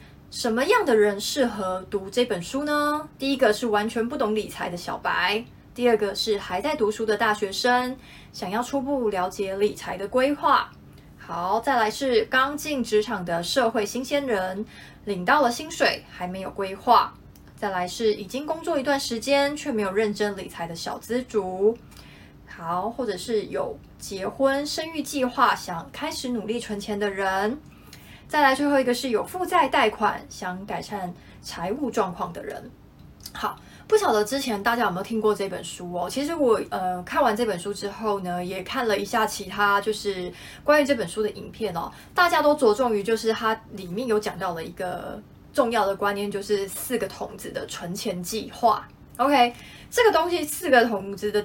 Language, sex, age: Chinese, female, 20-39